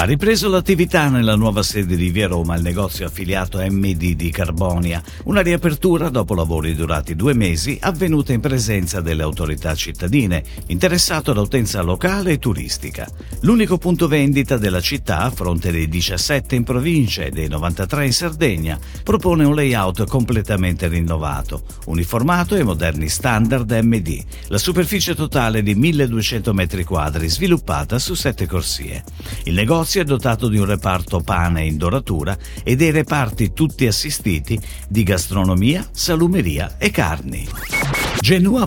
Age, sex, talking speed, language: 50-69, male, 145 wpm, Italian